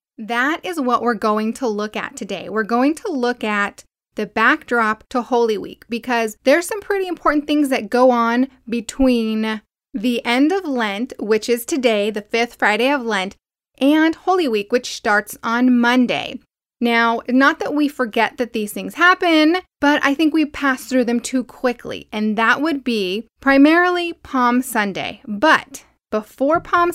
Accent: American